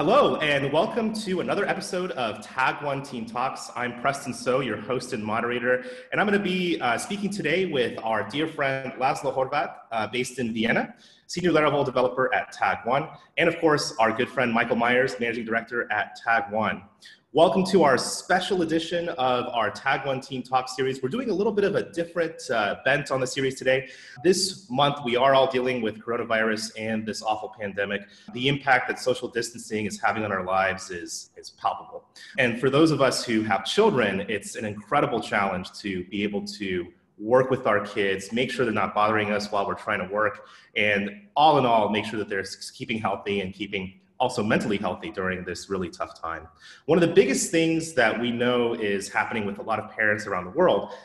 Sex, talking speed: male, 200 wpm